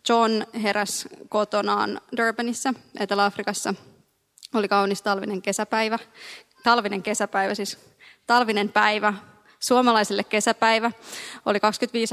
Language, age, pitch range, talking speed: Finnish, 20-39, 205-235 Hz, 90 wpm